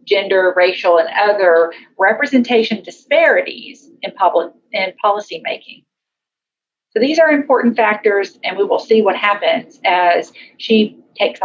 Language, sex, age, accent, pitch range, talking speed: English, female, 40-59, American, 185-255 Hz, 130 wpm